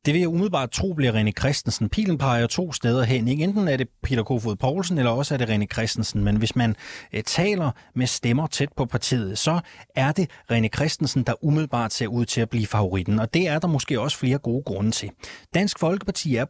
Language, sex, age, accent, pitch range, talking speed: Danish, male, 30-49, native, 115-155 Hz, 220 wpm